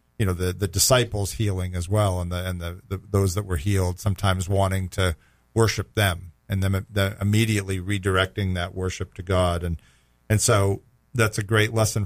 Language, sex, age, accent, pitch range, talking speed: English, male, 40-59, American, 95-110 Hz, 190 wpm